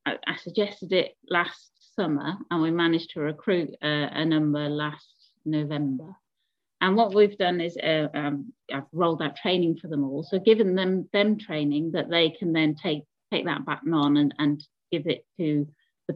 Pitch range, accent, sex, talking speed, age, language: 150-195 Hz, British, female, 180 wpm, 30-49, English